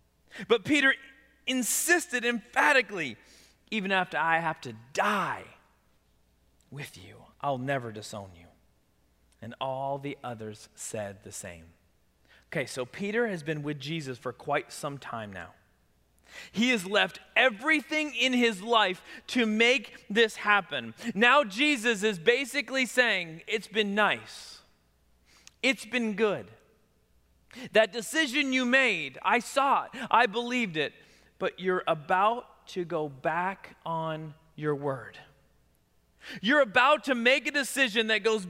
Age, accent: 30-49, American